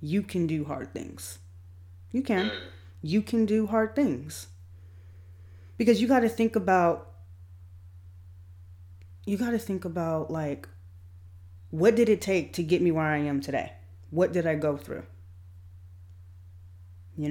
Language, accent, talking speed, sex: English, American, 135 wpm, female